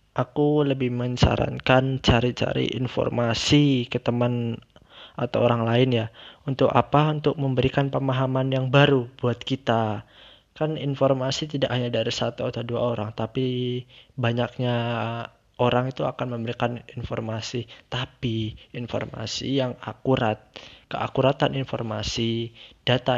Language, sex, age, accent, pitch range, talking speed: Indonesian, male, 20-39, native, 115-135 Hz, 110 wpm